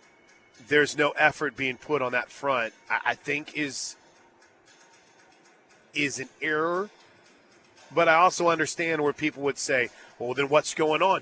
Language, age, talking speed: English, 30-49, 145 wpm